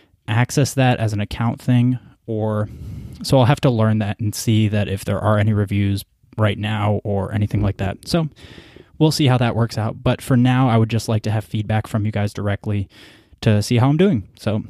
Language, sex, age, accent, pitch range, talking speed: English, male, 20-39, American, 110-125 Hz, 220 wpm